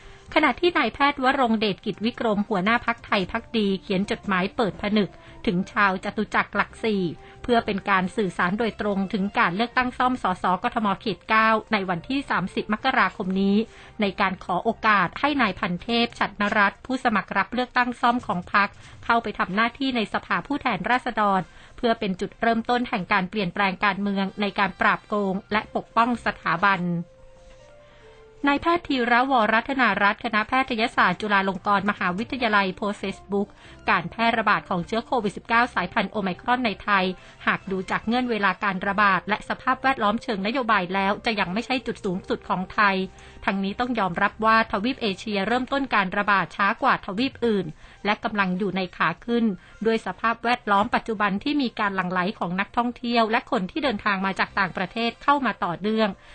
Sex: female